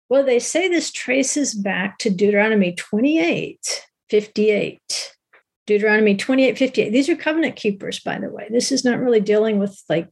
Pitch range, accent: 205-265 Hz, American